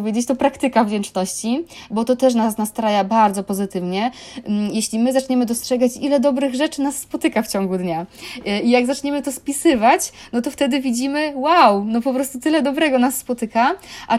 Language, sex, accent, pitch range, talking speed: Polish, female, native, 205-255 Hz, 180 wpm